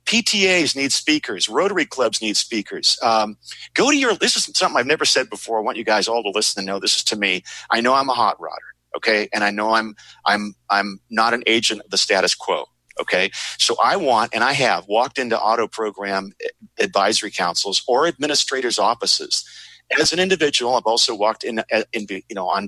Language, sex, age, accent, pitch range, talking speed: English, male, 40-59, American, 105-155 Hz, 210 wpm